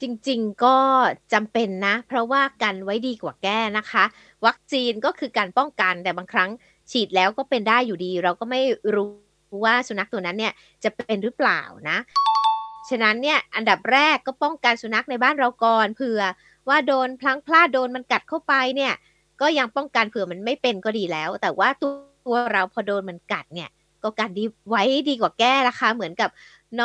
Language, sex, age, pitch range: Thai, female, 20-39, 210-270 Hz